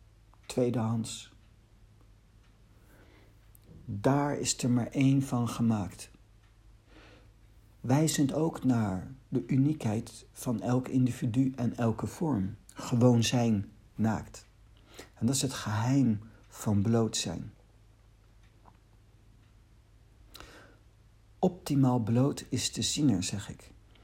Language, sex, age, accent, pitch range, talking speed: Dutch, male, 60-79, Dutch, 105-125 Hz, 90 wpm